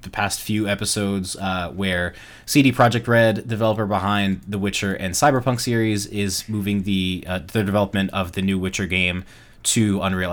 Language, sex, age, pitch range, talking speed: English, male, 20-39, 90-110 Hz, 170 wpm